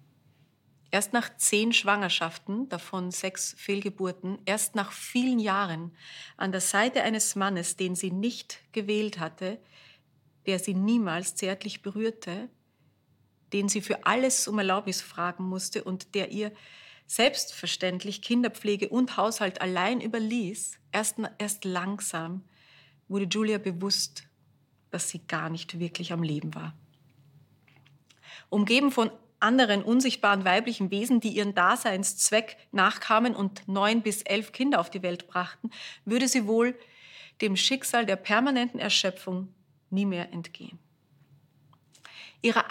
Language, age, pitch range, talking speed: German, 30-49, 175-220 Hz, 125 wpm